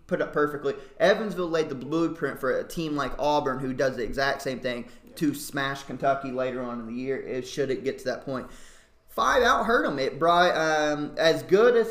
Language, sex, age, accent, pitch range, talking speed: English, male, 20-39, American, 135-175 Hz, 215 wpm